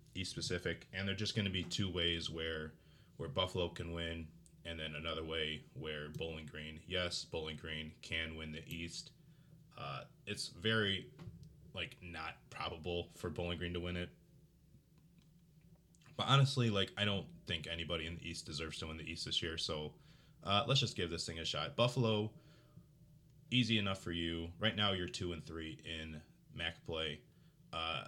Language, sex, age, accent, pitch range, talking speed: English, male, 20-39, American, 80-115 Hz, 175 wpm